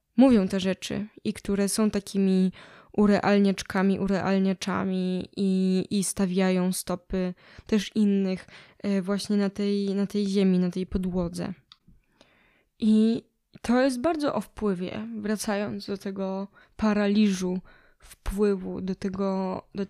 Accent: native